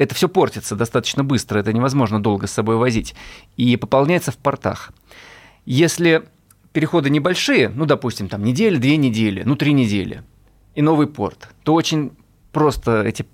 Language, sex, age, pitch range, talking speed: Russian, male, 30-49, 105-140 Hz, 155 wpm